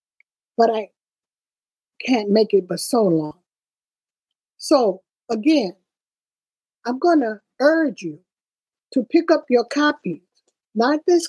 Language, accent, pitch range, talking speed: English, American, 195-260 Hz, 115 wpm